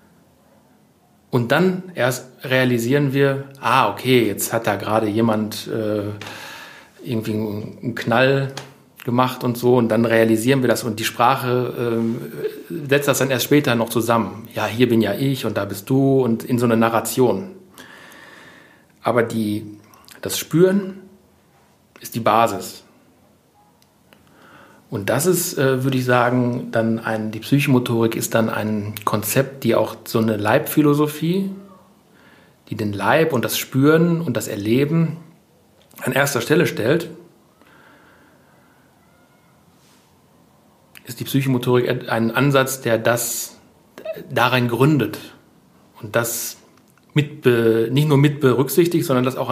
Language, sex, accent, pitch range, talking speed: German, male, German, 115-135 Hz, 130 wpm